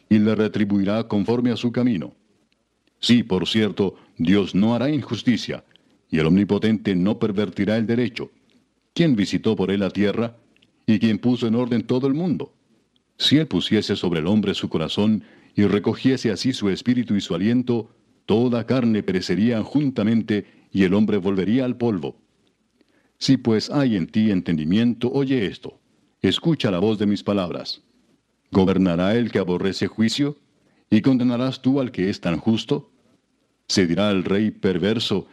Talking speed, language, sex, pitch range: 160 wpm, Spanish, male, 100-120 Hz